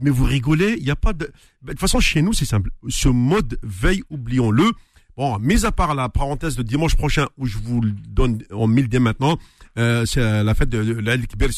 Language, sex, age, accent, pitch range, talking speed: French, male, 50-69, French, 115-170 Hz, 230 wpm